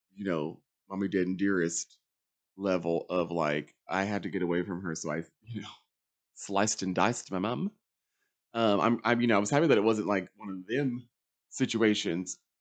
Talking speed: 195 wpm